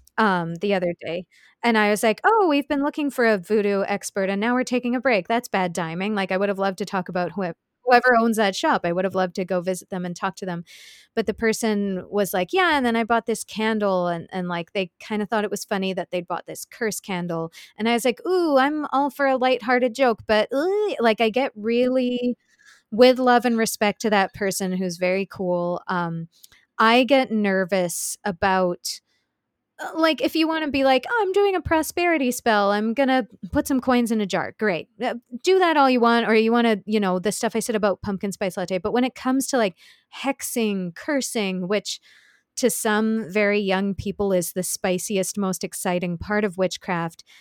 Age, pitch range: 20-39, 190-245 Hz